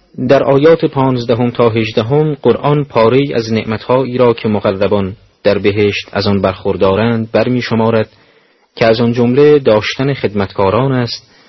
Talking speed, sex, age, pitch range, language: 130 wpm, male, 30-49, 100-130 Hz, Persian